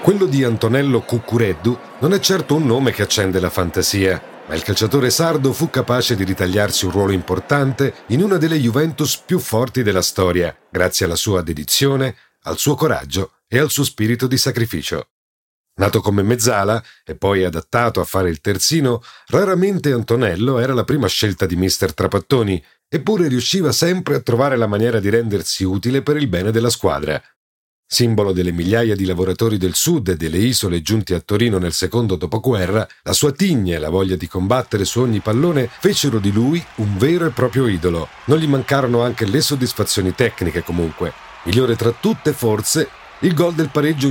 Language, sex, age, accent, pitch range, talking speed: Italian, male, 40-59, native, 95-140 Hz, 175 wpm